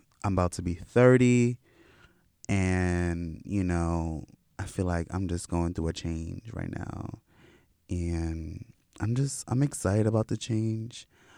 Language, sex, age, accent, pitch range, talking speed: English, male, 20-39, American, 90-110 Hz, 140 wpm